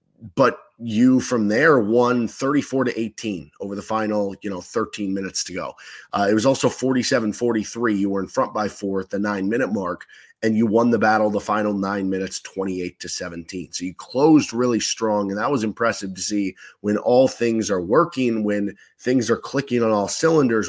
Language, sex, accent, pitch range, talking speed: English, male, American, 100-120 Hz, 200 wpm